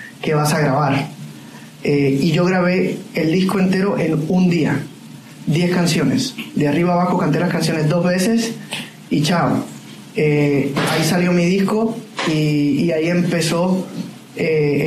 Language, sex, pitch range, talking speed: Spanish, male, 150-185 Hz, 145 wpm